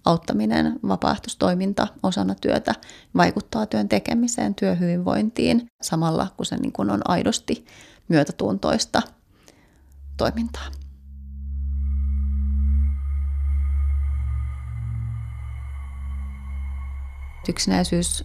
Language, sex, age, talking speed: Finnish, female, 30-49, 55 wpm